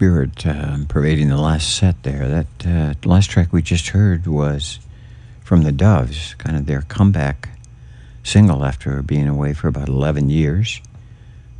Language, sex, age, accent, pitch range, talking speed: English, male, 60-79, American, 75-105 Hz, 160 wpm